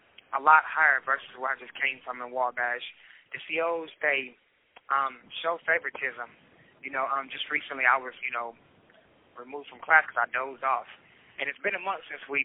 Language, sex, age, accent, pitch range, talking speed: English, male, 20-39, American, 130-155 Hz, 195 wpm